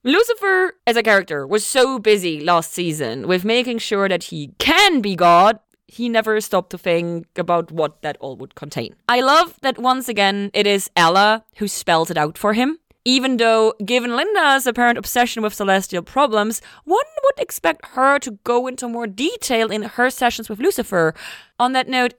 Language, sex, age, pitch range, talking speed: English, female, 30-49, 190-250 Hz, 185 wpm